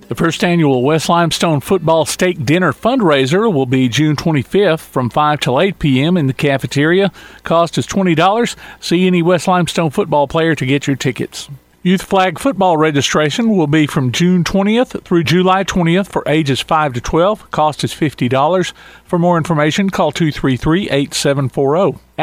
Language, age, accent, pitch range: English, 50-69, American, 140-185 Hz